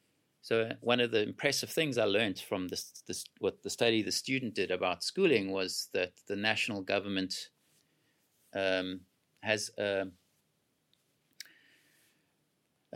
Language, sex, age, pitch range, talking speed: Swedish, male, 30-49, 95-120 Hz, 130 wpm